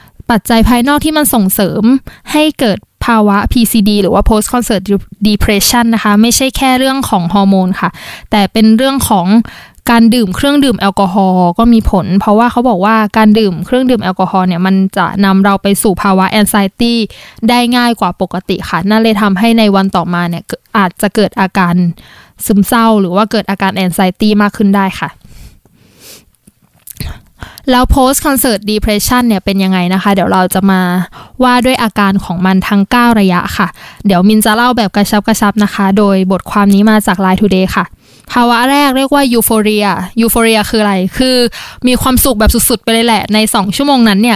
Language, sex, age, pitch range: Thai, female, 20-39, 195-240 Hz